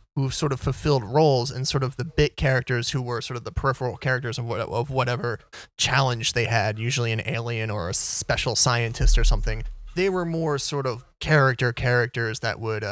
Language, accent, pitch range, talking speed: English, American, 110-135 Hz, 205 wpm